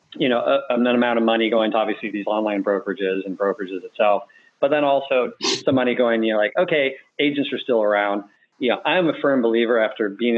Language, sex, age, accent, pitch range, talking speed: English, male, 40-59, American, 105-125 Hz, 225 wpm